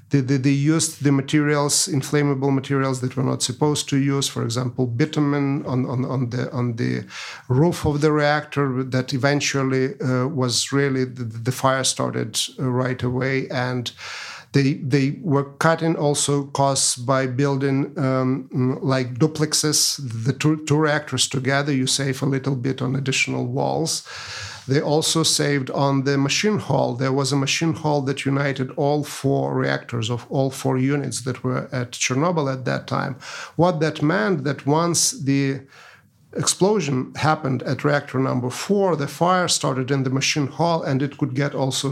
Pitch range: 130-145 Hz